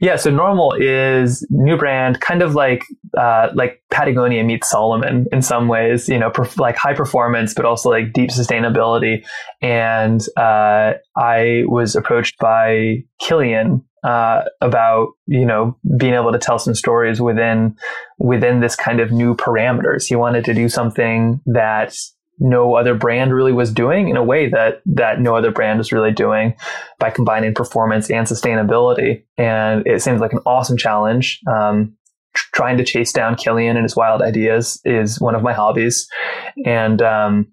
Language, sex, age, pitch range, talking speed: English, male, 20-39, 110-125 Hz, 170 wpm